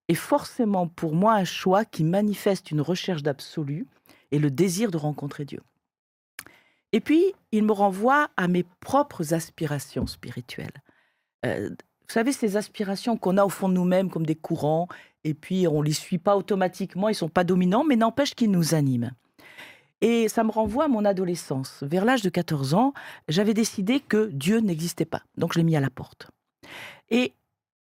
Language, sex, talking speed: French, female, 180 wpm